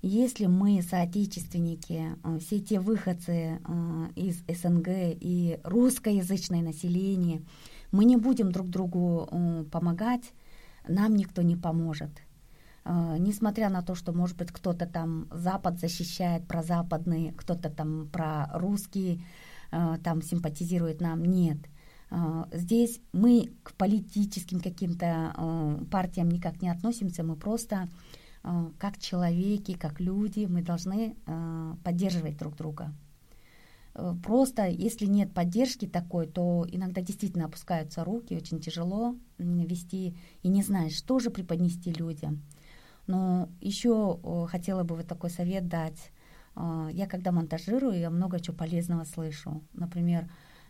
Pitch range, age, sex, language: 165-190 Hz, 20-39, female, Korean